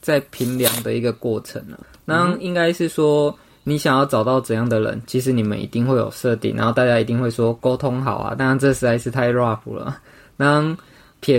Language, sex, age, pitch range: Chinese, male, 20-39, 115-135 Hz